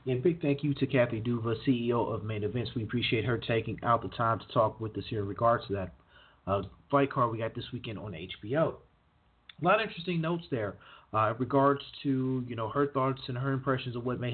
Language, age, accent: English, 30-49, American